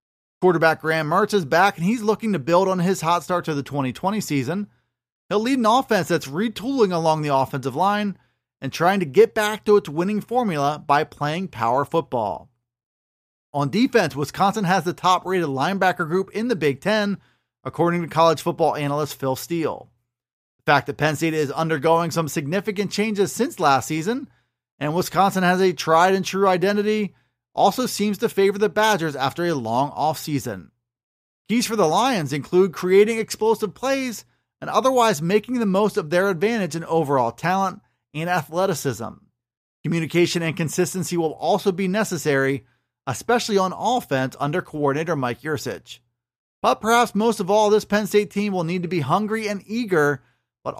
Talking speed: 165 wpm